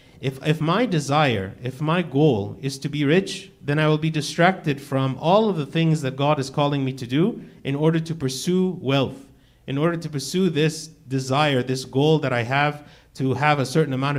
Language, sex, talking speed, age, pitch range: English, male, 205 wpm, 50-69, 130-165 Hz